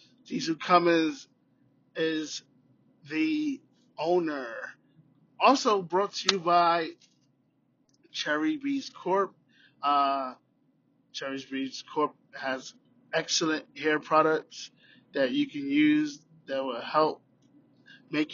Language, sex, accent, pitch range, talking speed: English, male, American, 150-195 Hz, 95 wpm